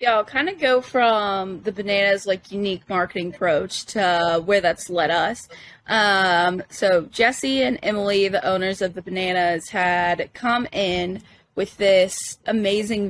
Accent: American